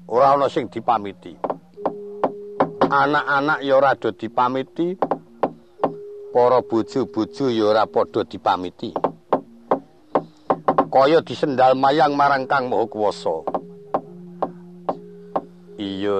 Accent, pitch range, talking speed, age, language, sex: native, 115-170 Hz, 65 wpm, 50-69, Indonesian, male